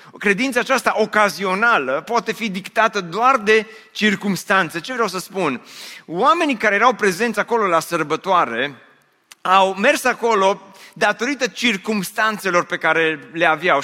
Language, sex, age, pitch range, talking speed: Romanian, male, 30-49, 190-235 Hz, 125 wpm